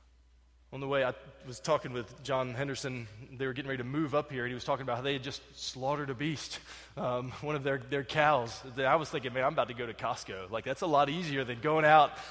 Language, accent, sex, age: English, American, male, 20-39